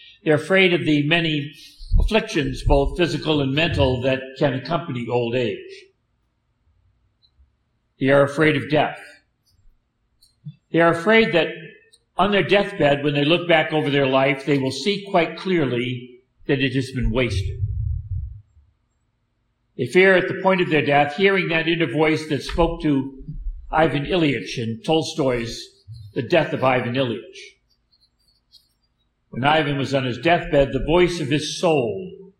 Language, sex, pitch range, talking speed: English, male, 115-160 Hz, 145 wpm